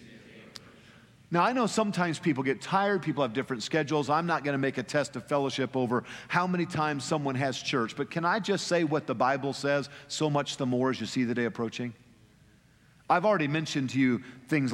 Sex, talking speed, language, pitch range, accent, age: male, 210 wpm, English, 145-200 Hz, American, 50-69